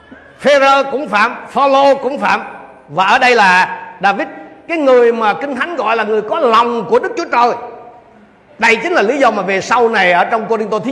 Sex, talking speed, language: male, 220 wpm, Vietnamese